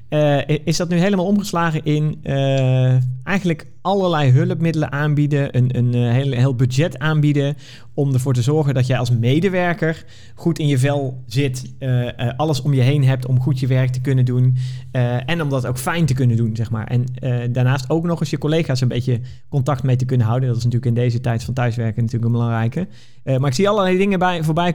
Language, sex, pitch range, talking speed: Dutch, male, 125-145 Hz, 220 wpm